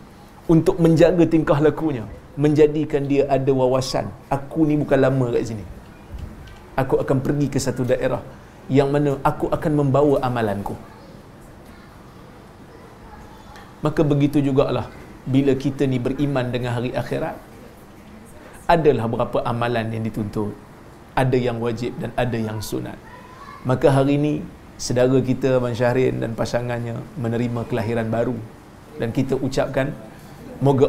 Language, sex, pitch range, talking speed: Malayalam, male, 125-150 Hz, 125 wpm